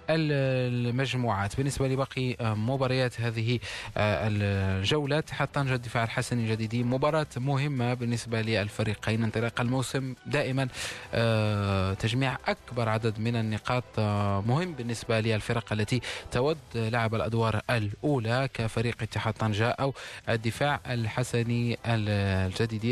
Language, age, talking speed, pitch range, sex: Arabic, 20-39, 100 wpm, 110-130 Hz, male